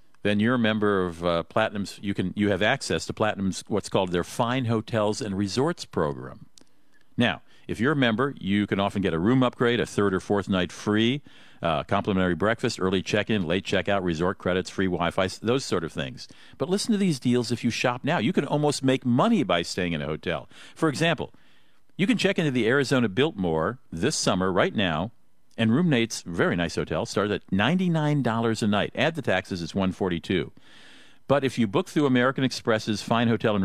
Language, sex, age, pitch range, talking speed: English, male, 50-69, 100-140 Hz, 200 wpm